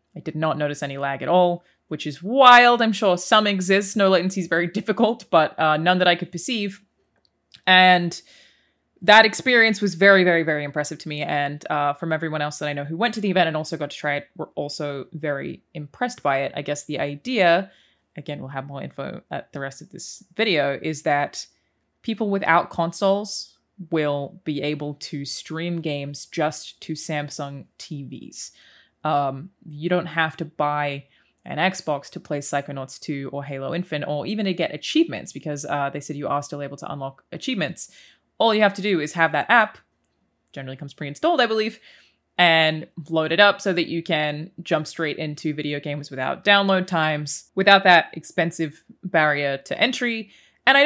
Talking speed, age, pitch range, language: 190 wpm, 20-39, 145-195 Hz, English